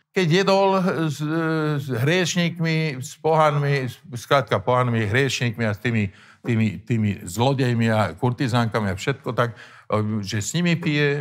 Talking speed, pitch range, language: 135 wpm, 115-150 Hz, Slovak